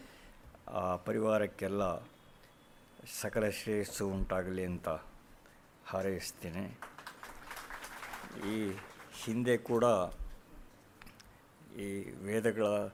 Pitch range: 95-115 Hz